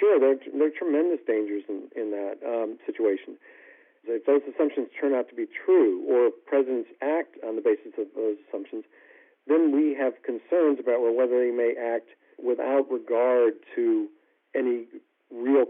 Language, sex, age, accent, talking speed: English, male, 50-69, American, 155 wpm